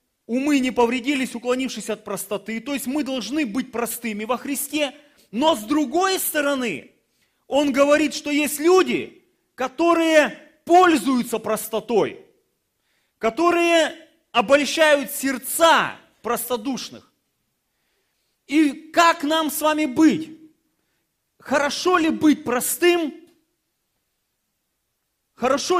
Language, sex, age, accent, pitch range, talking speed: Russian, male, 30-49, native, 240-310 Hz, 95 wpm